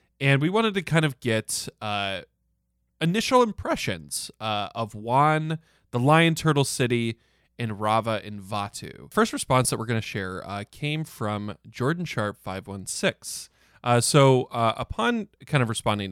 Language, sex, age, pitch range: English, male, 20-39, 105-140 Hz